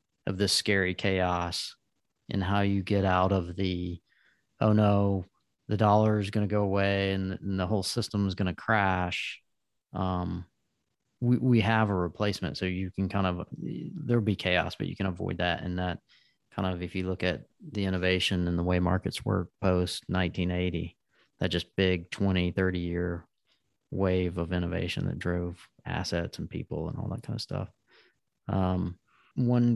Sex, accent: male, American